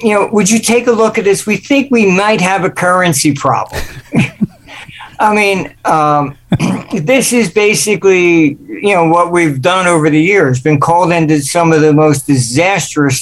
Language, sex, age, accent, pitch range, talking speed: English, male, 60-79, American, 150-195 Hz, 175 wpm